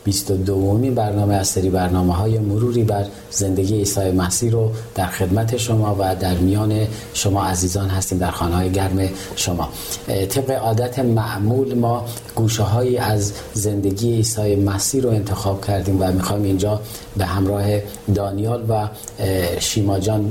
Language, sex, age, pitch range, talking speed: Persian, male, 40-59, 95-110 Hz, 135 wpm